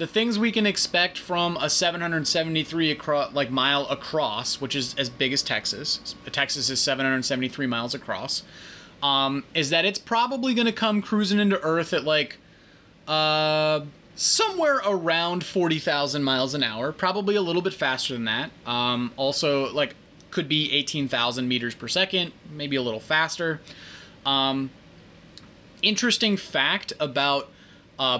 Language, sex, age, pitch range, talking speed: English, male, 20-39, 140-180 Hz, 145 wpm